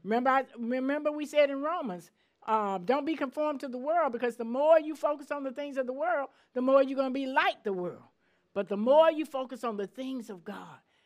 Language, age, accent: English, 50-69, American